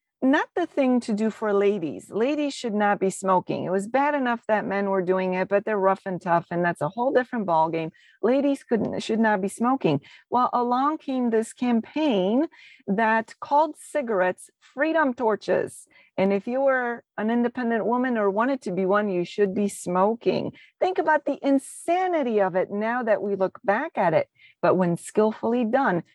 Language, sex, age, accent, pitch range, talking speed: English, female, 40-59, American, 200-270 Hz, 185 wpm